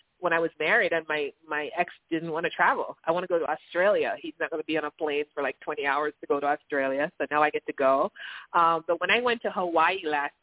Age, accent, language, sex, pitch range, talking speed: 30-49, American, English, female, 160-225 Hz, 275 wpm